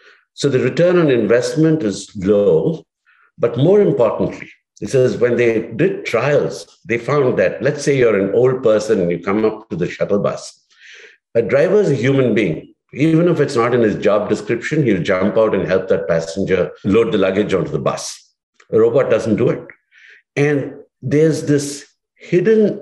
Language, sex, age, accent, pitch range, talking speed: English, male, 60-79, Indian, 115-165 Hz, 180 wpm